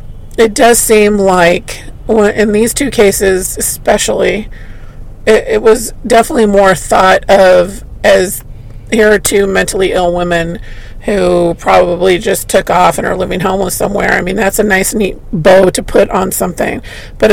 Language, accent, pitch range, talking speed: English, American, 180-215 Hz, 155 wpm